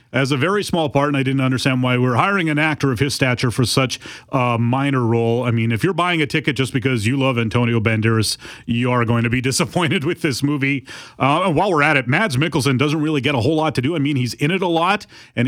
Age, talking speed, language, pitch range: 30-49, 265 wpm, English, 115-150 Hz